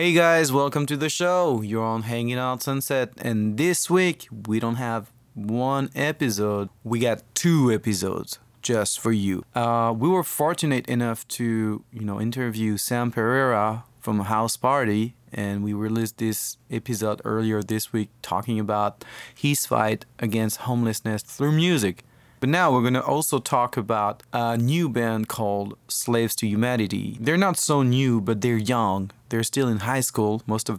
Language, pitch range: English, 110-130 Hz